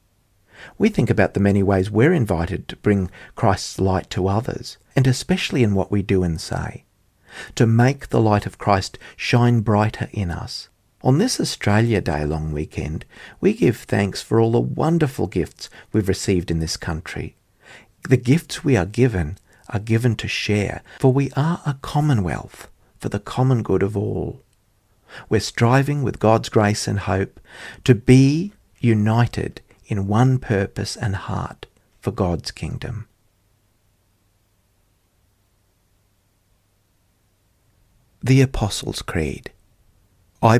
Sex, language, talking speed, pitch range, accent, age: male, English, 135 wpm, 95-120 Hz, Australian, 50-69